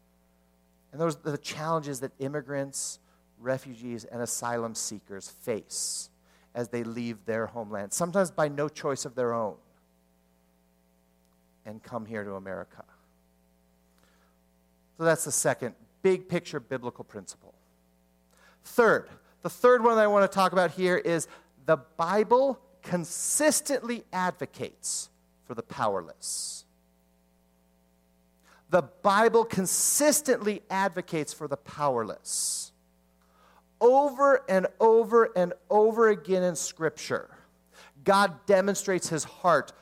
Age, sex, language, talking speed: 50-69, male, English, 115 wpm